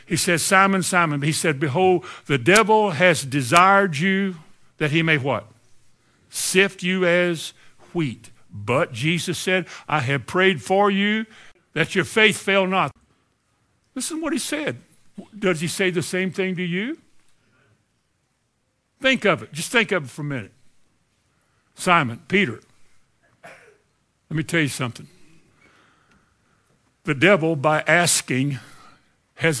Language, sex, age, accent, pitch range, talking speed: English, male, 60-79, American, 125-180 Hz, 140 wpm